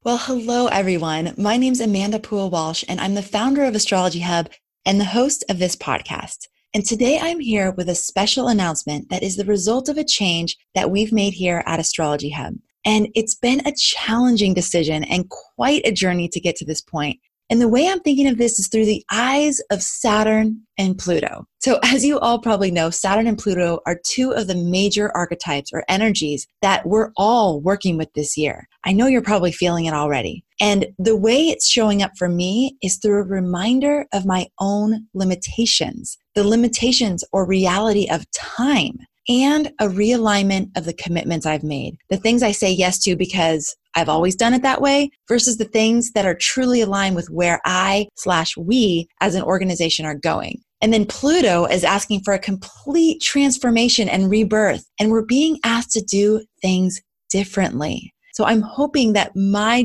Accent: American